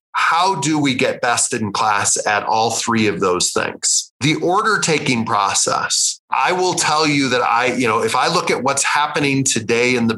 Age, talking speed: 30-49, 200 wpm